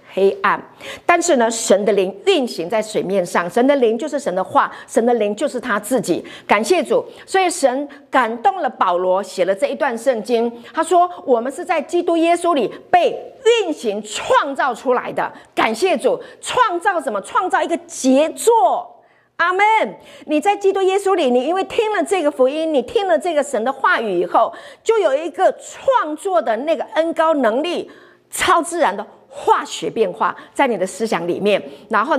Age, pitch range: 50-69, 235-360 Hz